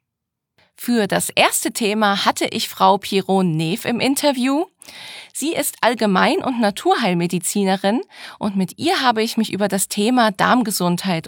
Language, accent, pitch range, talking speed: German, German, 195-250 Hz, 140 wpm